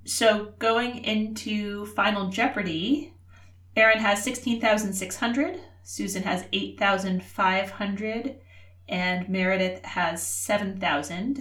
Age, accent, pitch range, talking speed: 30-49, American, 180-220 Hz, 80 wpm